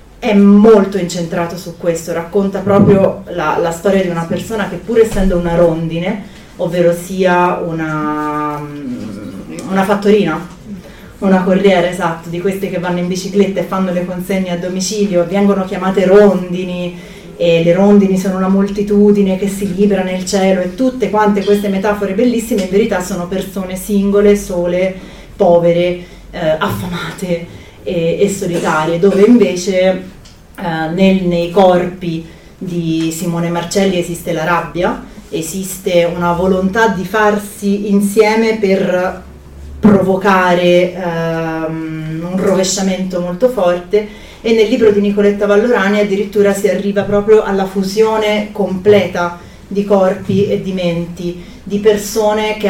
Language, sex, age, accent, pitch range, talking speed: Italian, female, 30-49, native, 175-205 Hz, 130 wpm